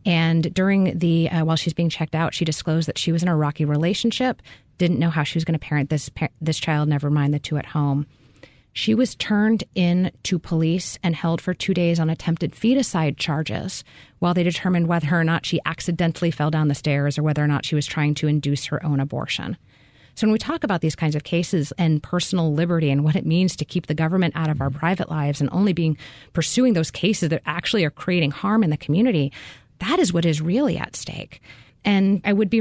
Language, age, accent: English, 30-49, American